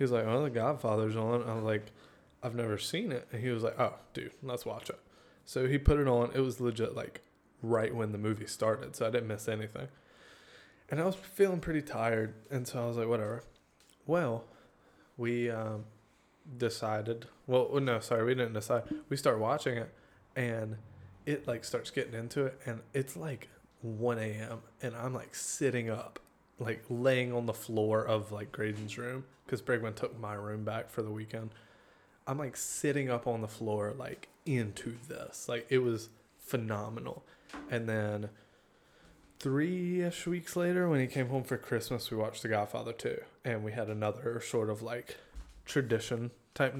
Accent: American